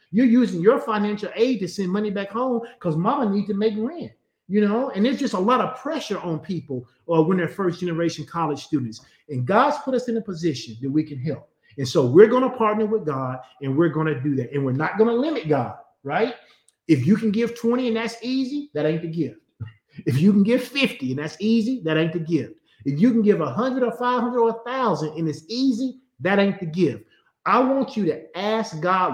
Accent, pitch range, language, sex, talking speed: American, 155-225 Hz, English, male, 235 wpm